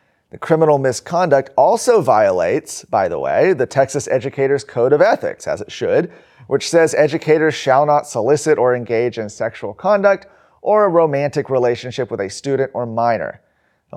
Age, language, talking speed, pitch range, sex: 30-49, English, 165 wpm, 115-145 Hz, male